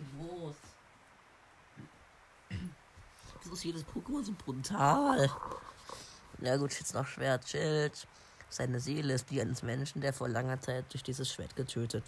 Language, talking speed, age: German, 140 wpm, 20-39